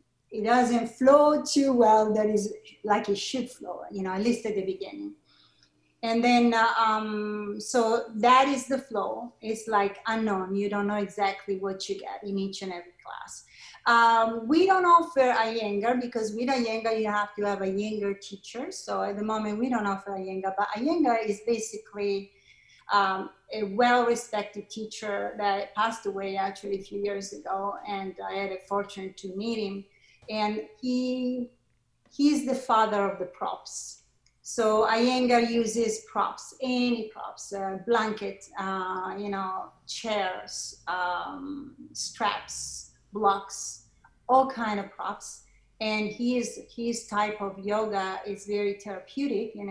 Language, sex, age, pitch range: English, female, 30-49, 195-235 Hz